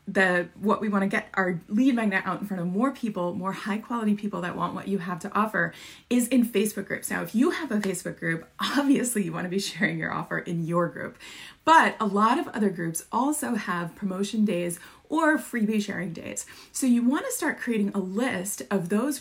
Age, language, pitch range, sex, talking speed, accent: 30-49, English, 185-235 Hz, female, 215 wpm, American